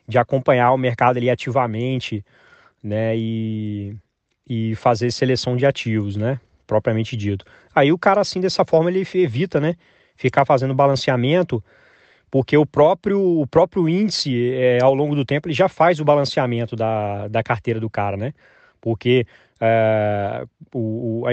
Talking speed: 150 wpm